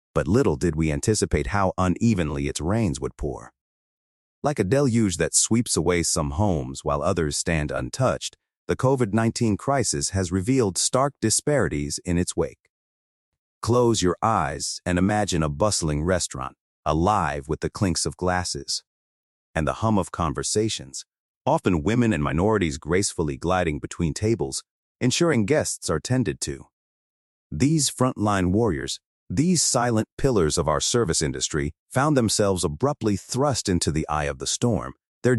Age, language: 30-49, English